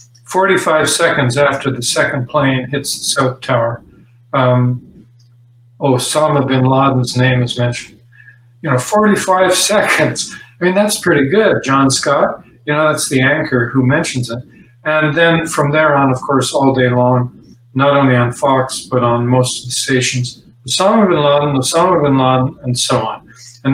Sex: male